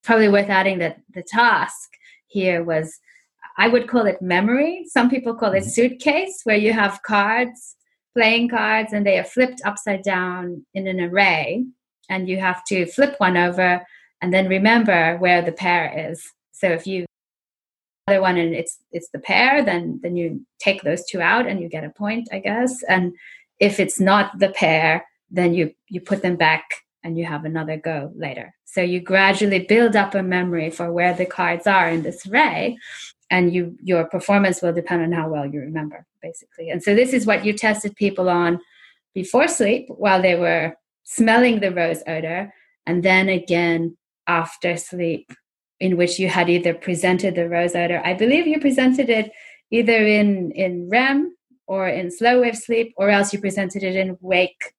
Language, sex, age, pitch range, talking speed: English, female, 30-49, 175-220 Hz, 185 wpm